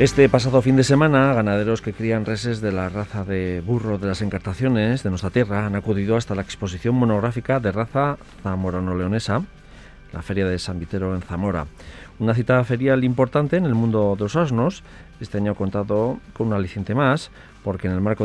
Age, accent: 40-59, Spanish